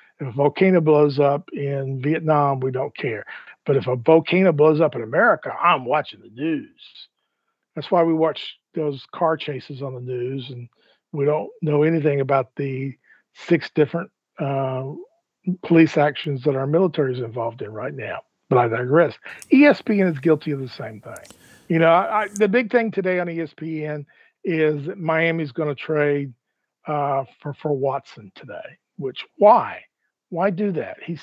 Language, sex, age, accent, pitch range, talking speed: English, male, 50-69, American, 145-185 Hz, 170 wpm